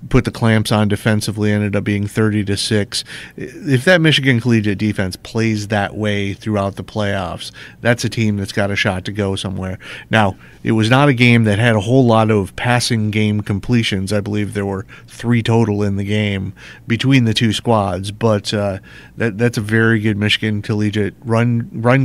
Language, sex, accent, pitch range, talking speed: English, male, American, 100-115 Hz, 190 wpm